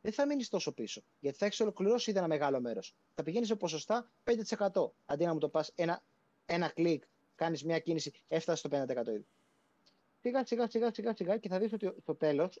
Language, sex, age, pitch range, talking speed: Greek, male, 30-49, 155-210 Hz, 200 wpm